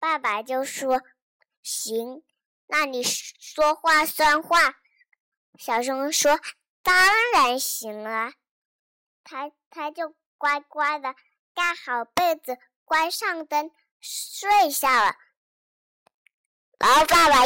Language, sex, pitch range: Chinese, male, 265-350 Hz